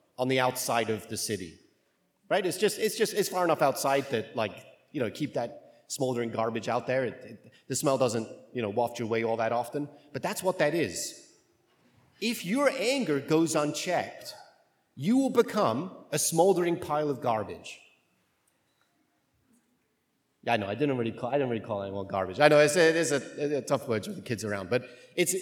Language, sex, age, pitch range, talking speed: English, male, 40-59, 130-210 Hz, 180 wpm